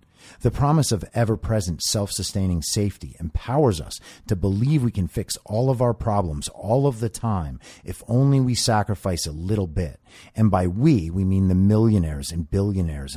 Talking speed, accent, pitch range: 170 wpm, American, 80-110 Hz